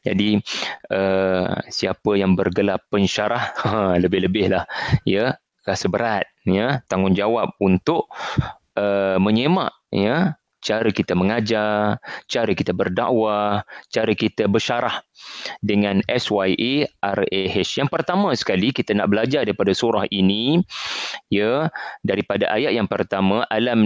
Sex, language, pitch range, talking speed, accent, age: male, English, 100-125 Hz, 110 wpm, Indonesian, 30-49